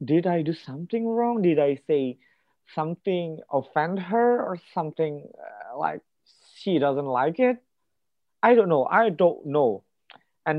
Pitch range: 130-180 Hz